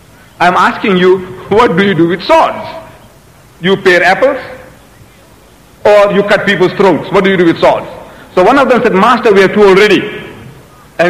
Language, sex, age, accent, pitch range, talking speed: Italian, male, 60-79, Indian, 175-230 Hz, 185 wpm